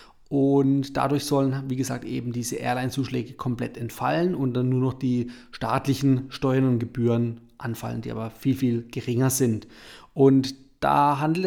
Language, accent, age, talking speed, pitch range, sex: German, German, 30-49, 150 wpm, 120-145 Hz, male